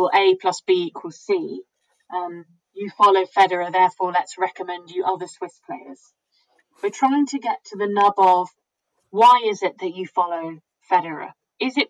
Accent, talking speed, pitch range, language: British, 165 wpm, 185-280 Hz, English